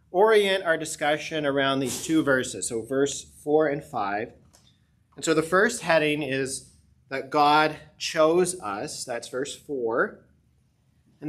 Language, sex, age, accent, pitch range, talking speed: English, male, 30-49, American, 130-170 Hz, 140 wpm